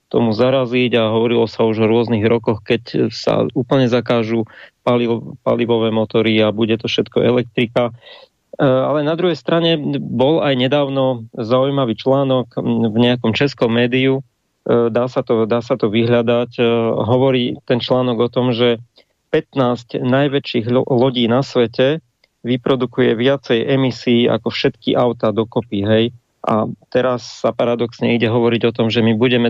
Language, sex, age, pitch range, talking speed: English, male, 40-59, 115-130 Hz, 140 wpm